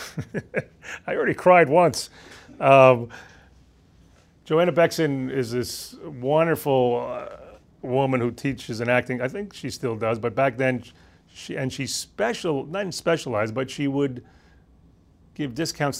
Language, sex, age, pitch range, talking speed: English, male, 40-59, 110-150 Hz, 130 wpm